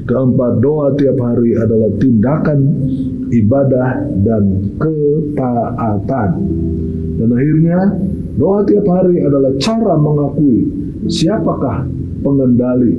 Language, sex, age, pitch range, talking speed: Indonesian, male, 50-69, 125-165 Hz, 90 wpm